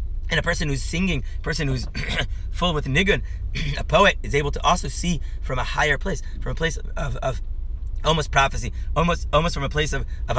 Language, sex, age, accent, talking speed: English, male, 30-49, American, 200 wpm